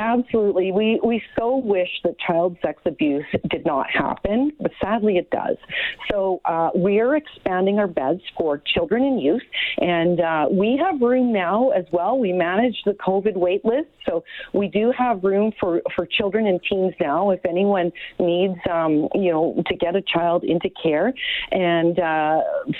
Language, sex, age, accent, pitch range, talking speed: English, female, 40-59, American, 175-255 Hz, 175 wpm